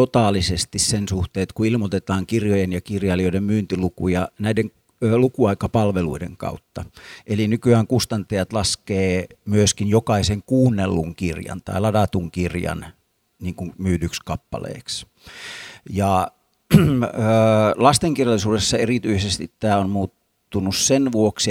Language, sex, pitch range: Finnish, male, 95-120 Hz